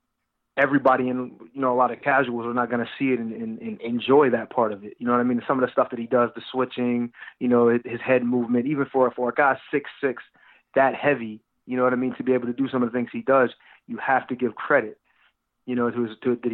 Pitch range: 120-130 Hz